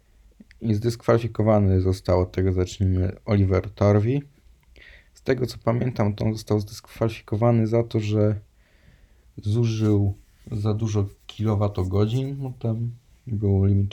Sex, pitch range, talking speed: male, 95-115 Hz, 115 wpm